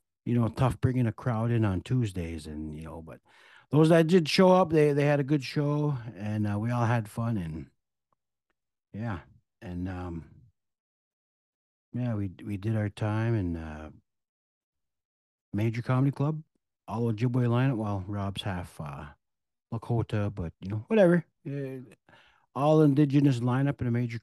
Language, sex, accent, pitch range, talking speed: English, male, American, 105-140 Hz, 160 wpm